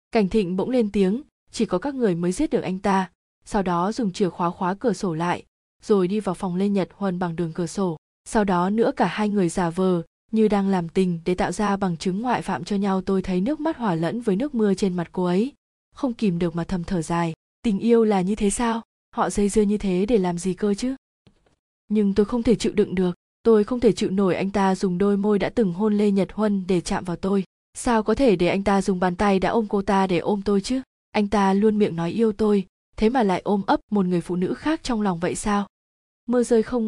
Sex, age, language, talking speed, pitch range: female, 20-39, Vietnamese, 260 wpm, 185-220 Hz